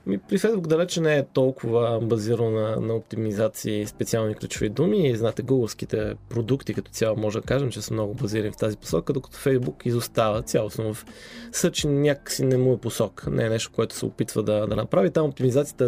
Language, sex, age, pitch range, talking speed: Bulgarian, male, 20-39, 110-135 Hz, 195 wpm